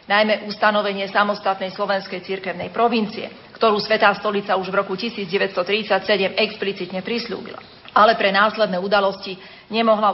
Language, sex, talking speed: Slovak, female, 120 wpm